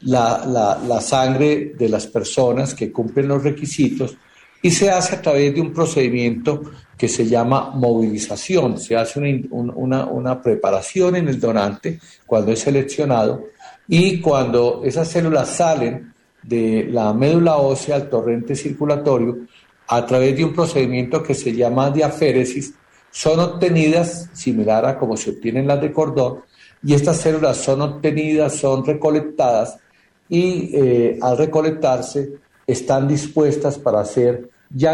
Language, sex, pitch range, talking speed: Spanish, male, 125-155 Hz, 145 wpm